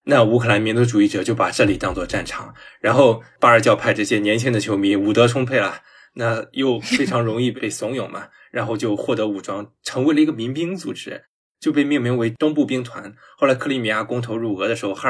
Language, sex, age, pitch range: Chinese, male, 20-39, 105-135 Hz